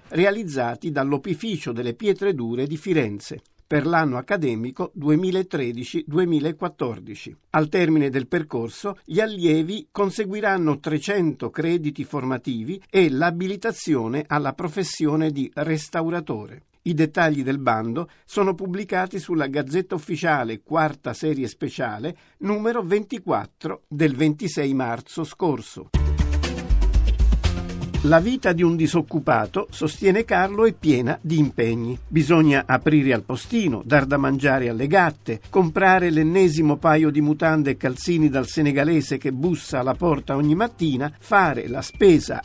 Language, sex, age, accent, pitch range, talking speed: Italian, male, 50-69, native, 135-180 Hz, 115 wpm